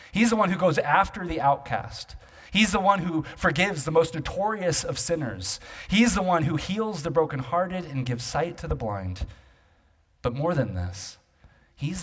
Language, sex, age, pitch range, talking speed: English, male, 30-49, 115-165 Hz, 180 wpm